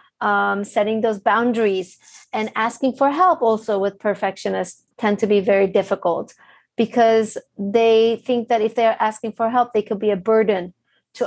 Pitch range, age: 205-245 Hz, 40-59